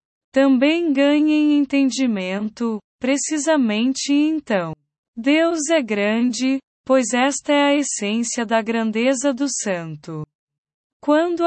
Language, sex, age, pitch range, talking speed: Portuguese, female, 20-39, 205-290 Hz, 95 wpm